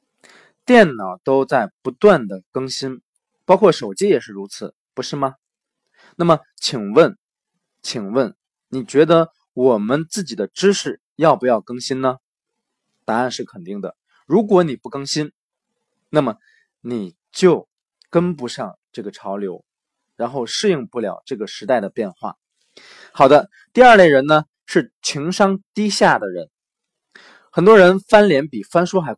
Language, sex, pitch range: Chinese, male, 130-200 Hz